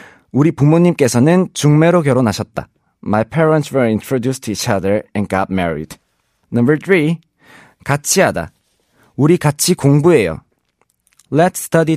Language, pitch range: Korean, 115-160 Hz